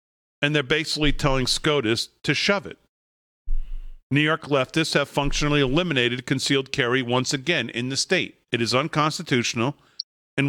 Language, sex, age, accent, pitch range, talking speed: English, male, 40-59, American, 125-155 Hz, 145 wpm